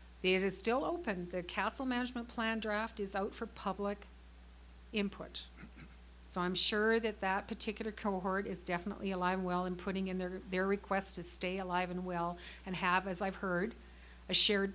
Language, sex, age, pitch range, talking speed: English, female, 40-59, 180-215 Hz, 180 wpm